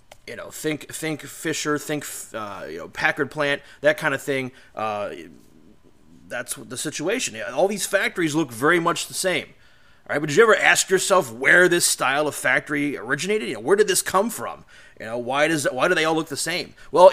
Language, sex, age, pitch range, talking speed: English, male, 30-49, 130-165 Hz, 210 wpm